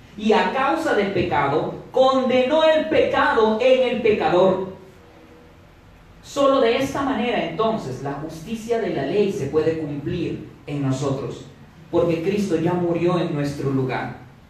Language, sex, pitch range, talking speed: Spanish, male, 130-190 Hz, 135 wpm